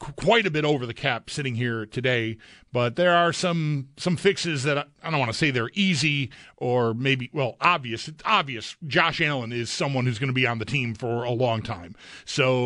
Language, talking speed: English, 220 wpm